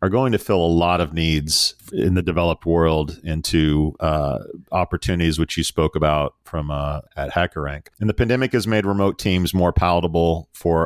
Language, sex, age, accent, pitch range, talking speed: English, male, 40-59, American, 80-95 Hz, 180 wpm